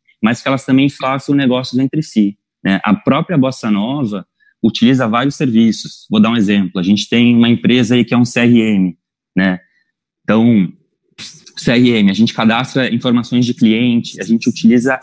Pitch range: 100-130 Hz